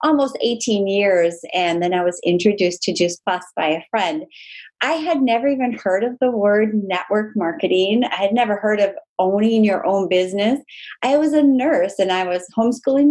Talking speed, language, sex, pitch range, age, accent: 190 wpm, English, female, 195-270 Hz, 30-49, American